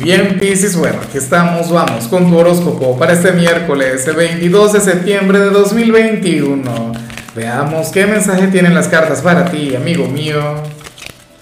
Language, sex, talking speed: Spanish, male, 145 wpm